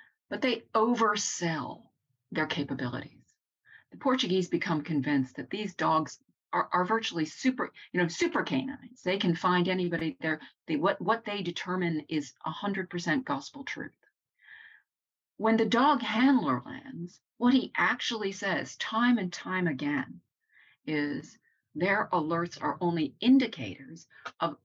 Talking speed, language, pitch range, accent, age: 135 wpm, English, 155-225 Hz, American, 40-59